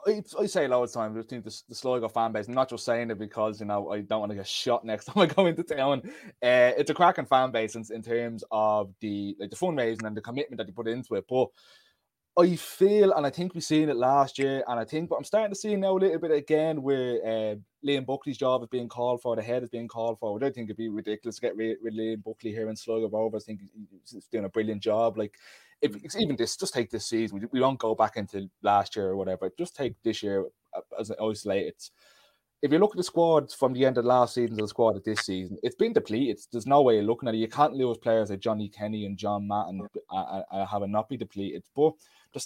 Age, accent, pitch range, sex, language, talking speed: 20-39, British, 110-140 Hz, male, English, 270 wpm